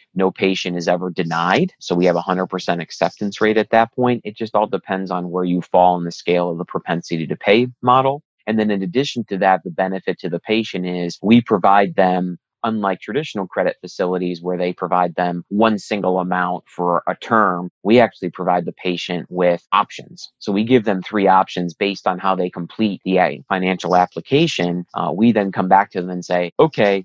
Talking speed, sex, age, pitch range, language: 205 wpm, male, 30-49, 90-105 Hz, English